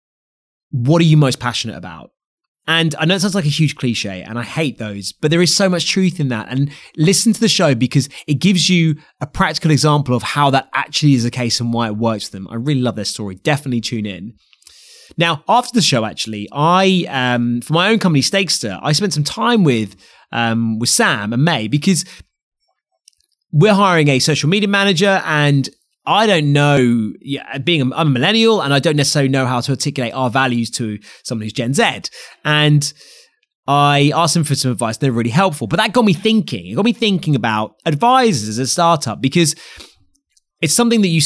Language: English